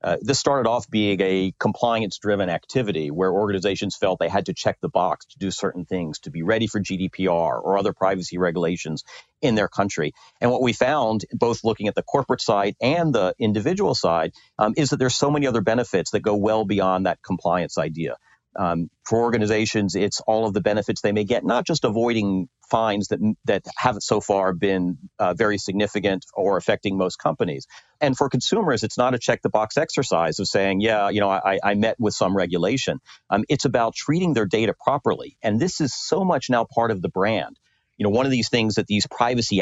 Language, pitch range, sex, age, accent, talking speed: English, 95-115 Hz, male, 40-59, American, 210 wpm